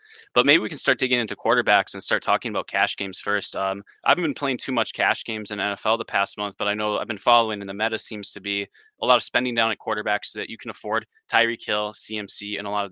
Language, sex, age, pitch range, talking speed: English, male, 20-39, 100-115 Hz, 270 wpm